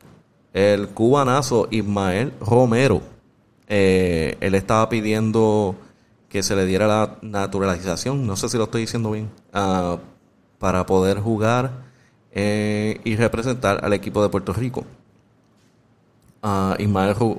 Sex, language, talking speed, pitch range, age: male, Spanish, 115 wpm, 100-115 Hz, 30-49